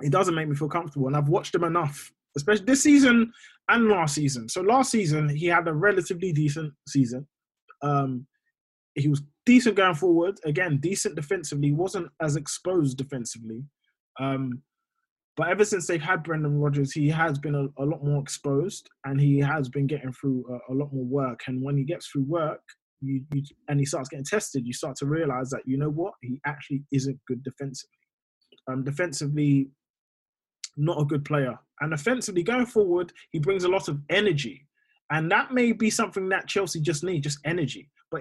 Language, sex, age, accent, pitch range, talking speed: English, male, 20-39, British, 140-180 Hz, 190 wpm